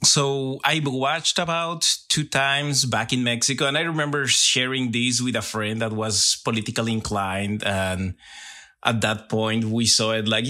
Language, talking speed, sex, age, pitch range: English, 165 wpm, male, 30-49, 105-125 Hz